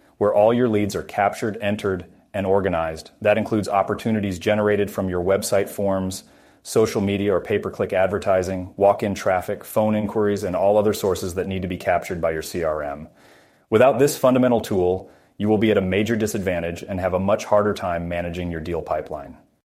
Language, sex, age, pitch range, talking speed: English, male, 30-49, 90-105 Hz, 180 wpm